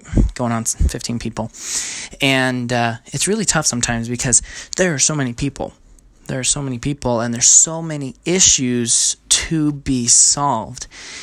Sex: male